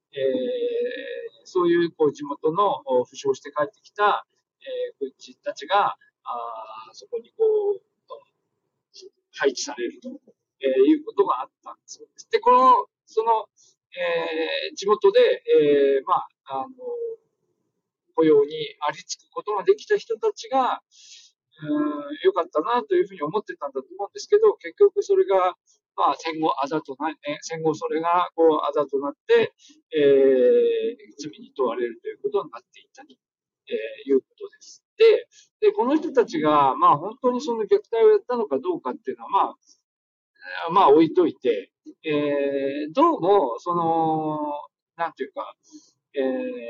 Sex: male